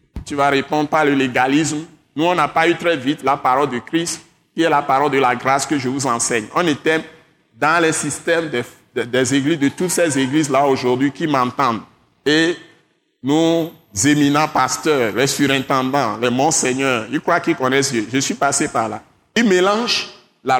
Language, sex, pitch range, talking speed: French, male, 135-185 Hz, 190 wpm